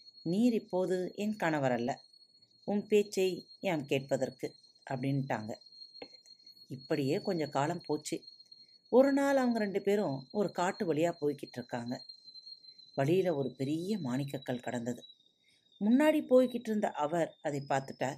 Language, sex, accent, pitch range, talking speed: Tamil, female, native, 135-195 Hz, 110 wpm